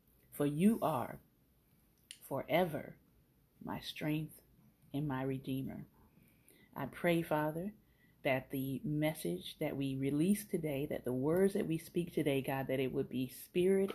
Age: 40-59